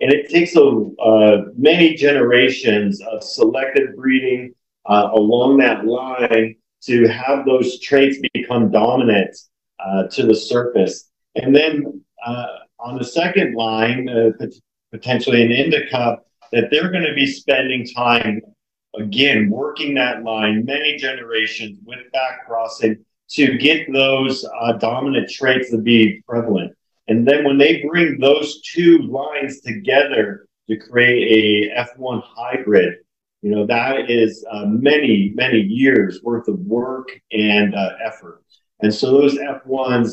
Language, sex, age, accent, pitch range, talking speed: English, male, 40-59, American, 110-140 Hz, 135 wpm